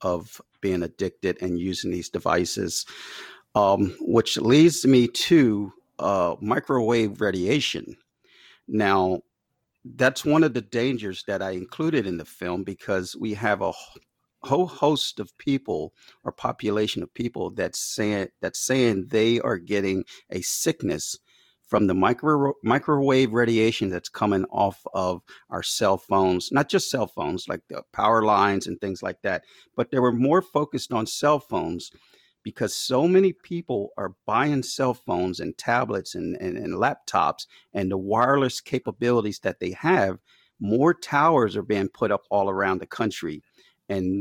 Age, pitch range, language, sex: 50-69, 95-130 Hz, English, male